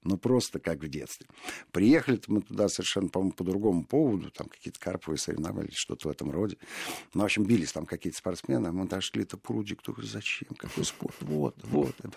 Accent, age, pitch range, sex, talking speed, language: native, 50-69, 80-115 Hz, male, 195 wpm, Russian